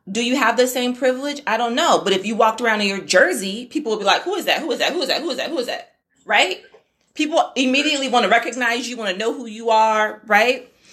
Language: English